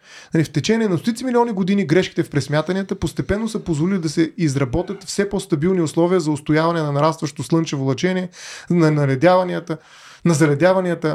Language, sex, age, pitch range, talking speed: Bulgarian, male, 30-49, 155-195 Hz, 145 wpm